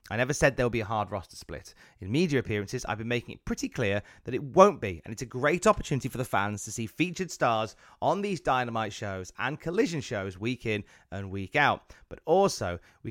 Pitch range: 110-155 Hz